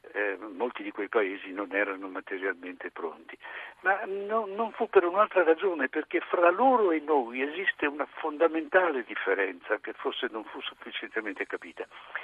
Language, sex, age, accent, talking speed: Italian, male, 60-79, native, 150 wpm